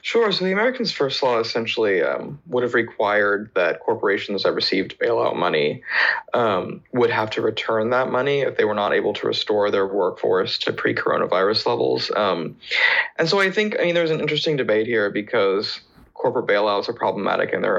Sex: male